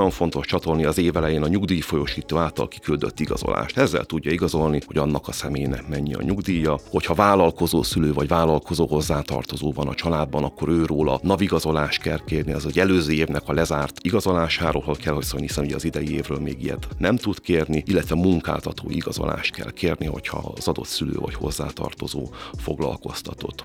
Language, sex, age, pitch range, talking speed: Hungarian, male, 30-49, 75-85 Hz, 165 wpm